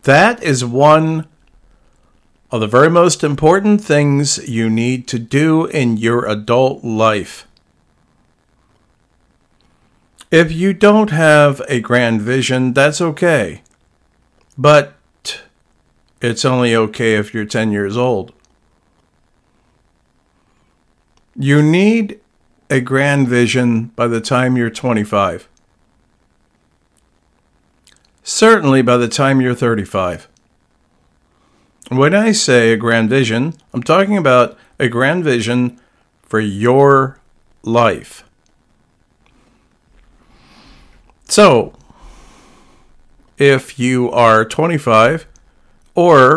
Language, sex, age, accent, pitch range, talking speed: English, male, 50-69, American, 110-140 Hz, 95 wpm